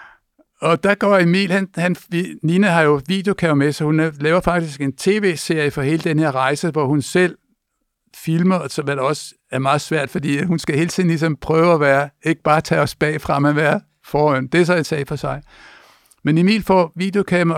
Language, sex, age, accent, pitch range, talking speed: Danish, male, 60-79, native, 140-170 Hz, 210 wpm